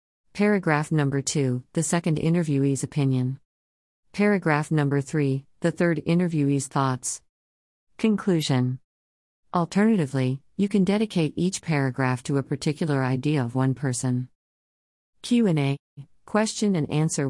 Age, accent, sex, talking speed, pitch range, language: 40-59, American, female, 120 wpm, 130-175 Hz, English